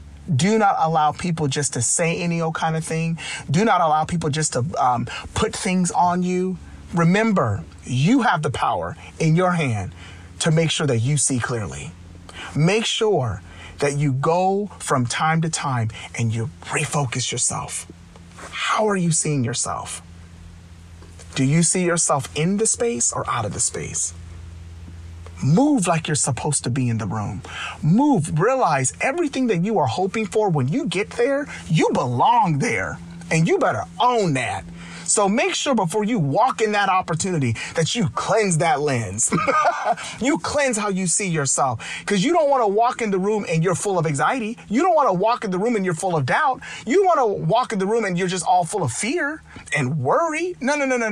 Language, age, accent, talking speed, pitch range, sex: English, 30-49, American, 190 wpm, 120-200 Hz, male